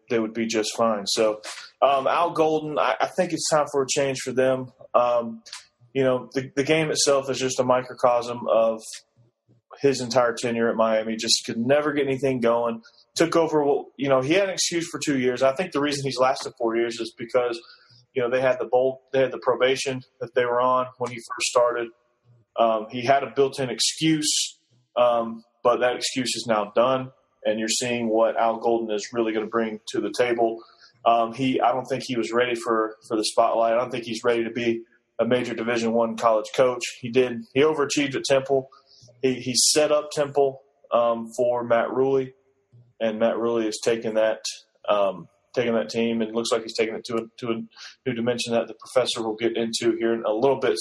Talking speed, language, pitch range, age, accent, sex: 215 wpm, English, 115-135 Hz, 30-49, American, male